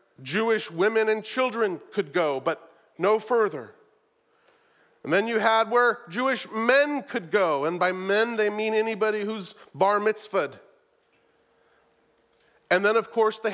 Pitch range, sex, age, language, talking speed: 200-280 Hz, male, 40-59, English, 140 wpm